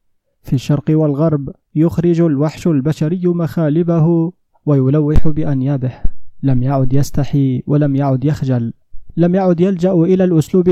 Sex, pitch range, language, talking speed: male, 140-165 Hz, Arabic, 110 wpm